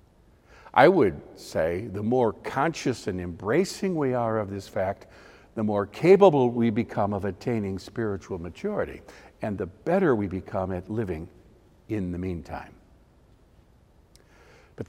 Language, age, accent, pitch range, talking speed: English, 60-79, American, 105-150 Hz, 135 wpm